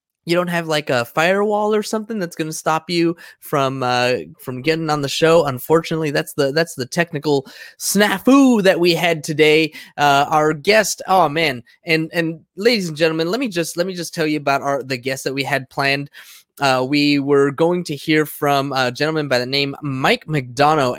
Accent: American